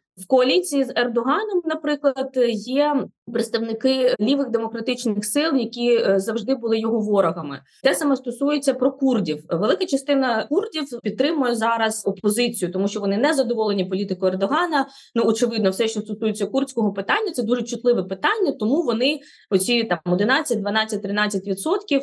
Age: 20-39